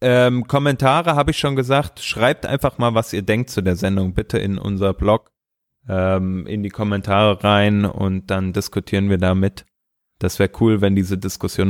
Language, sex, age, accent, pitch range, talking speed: German, male, 20-39, German, 95-115 Hz, 180 wpm